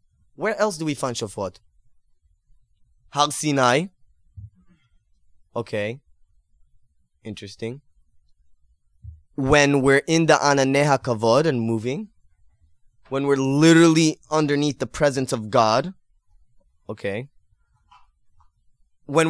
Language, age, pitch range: English, 20-39, 115-160 Hz